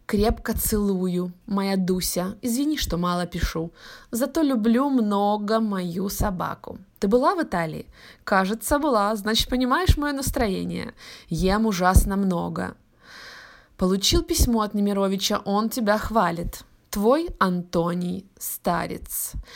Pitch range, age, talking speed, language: 180-230 Hz, 20-39, 110 wpm, Russian